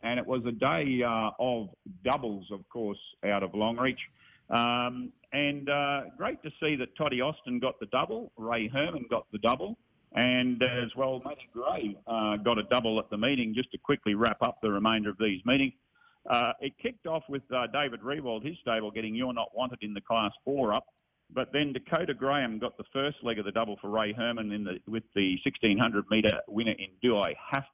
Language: English